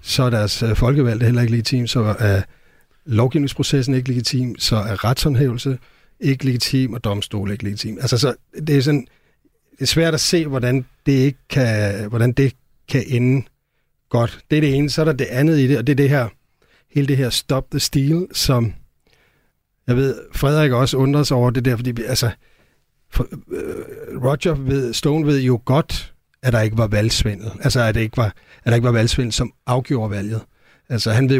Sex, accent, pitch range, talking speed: male, native, 115-140 Hz, 200 wpm